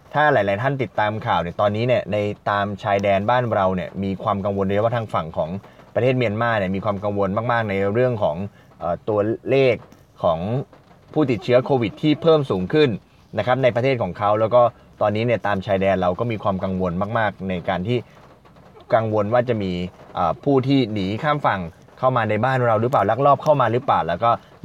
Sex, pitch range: male, 95-125 Hz